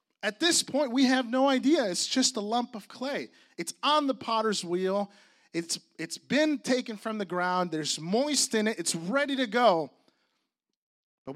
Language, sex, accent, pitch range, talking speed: English, male, American, 195-275 Hz, 180 wpm